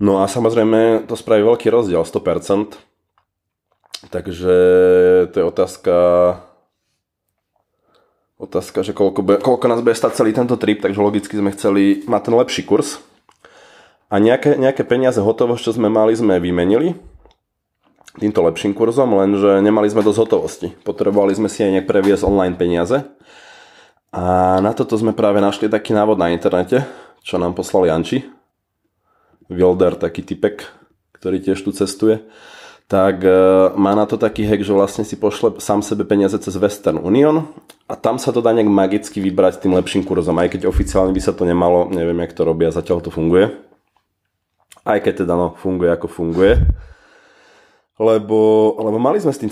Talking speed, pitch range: 160 wpm, 90-110 Hz